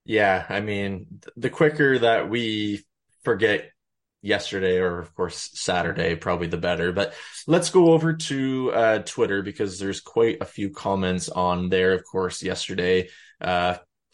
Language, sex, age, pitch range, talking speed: English, male, 20-39, 90-110 Hz, 150 wpm